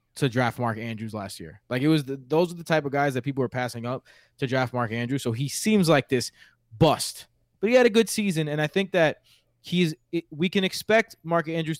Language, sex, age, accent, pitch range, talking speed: English, male, 20-39, American, 125-160 Hz, 245 wpm